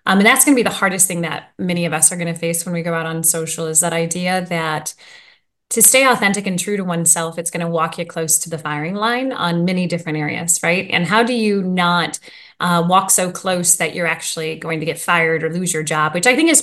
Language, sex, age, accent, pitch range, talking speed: English, female, 20-39, American, 170-210 Hz, 265 wpm